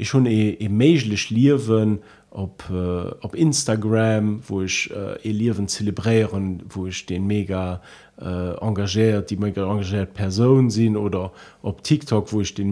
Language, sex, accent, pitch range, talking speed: German, male, German, 105-140 Hz, 155 wpm